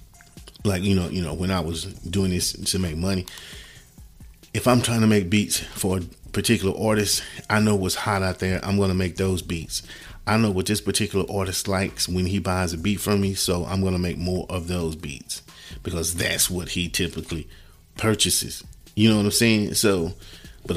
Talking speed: 200 wpm